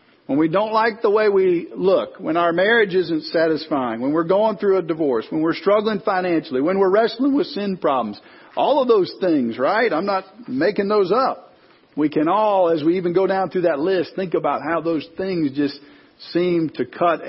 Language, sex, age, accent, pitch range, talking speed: English, male, 50-69, American, 155-225 Hz, 205 wpm